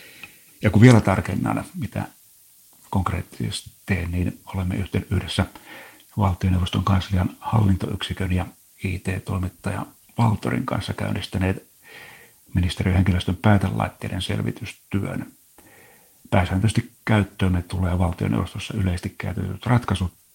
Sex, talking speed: male, 85 wpm